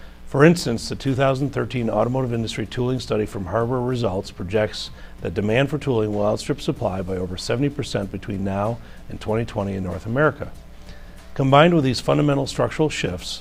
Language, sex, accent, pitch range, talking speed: English, male, American, 100-125 Hz, 155 wpm